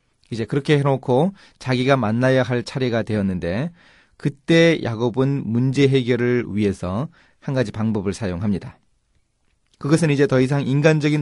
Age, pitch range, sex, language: 40-59, 110-150 Hz, male, Korean